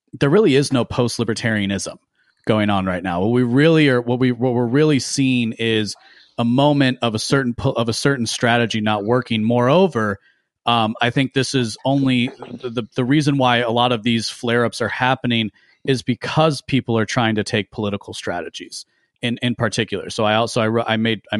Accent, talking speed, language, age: American, 200 wpm, English, 30-49